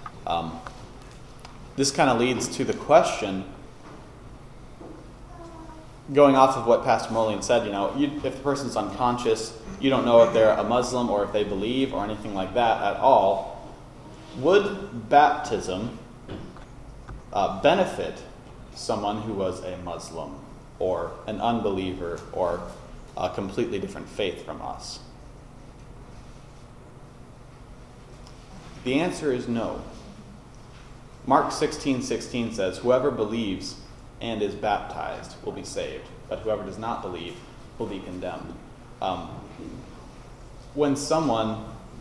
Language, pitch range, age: English, 100-125 Hz, 30-49